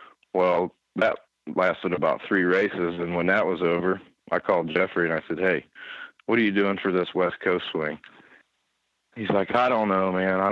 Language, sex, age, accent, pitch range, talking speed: English, male, 40-59, American, 85-100 Hz, 195 wpm